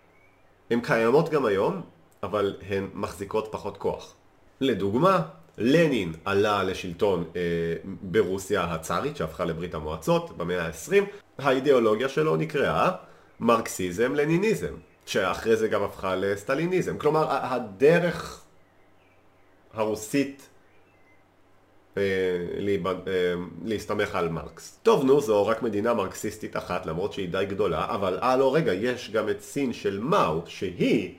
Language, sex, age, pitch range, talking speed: Hebrew, male, 40-59, 90-135 Hz, 115 wpm